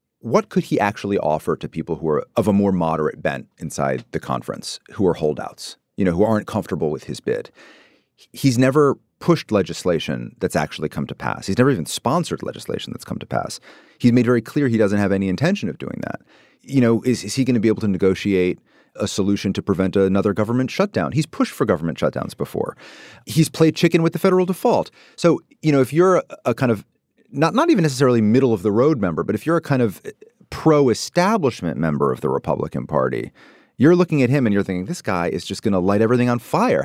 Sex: male